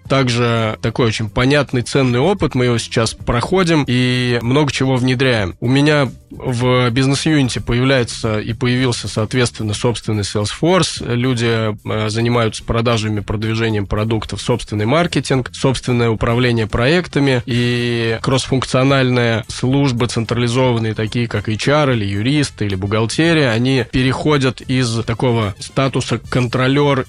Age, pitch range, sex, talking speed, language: 20-39, 115-130 Hz, male, 115 wpm, Russian